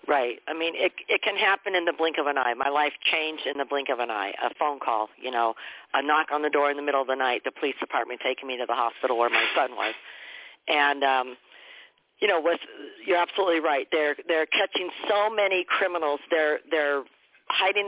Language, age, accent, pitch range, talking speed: English, 50-69, American, 150-200 Hz, 225 wpm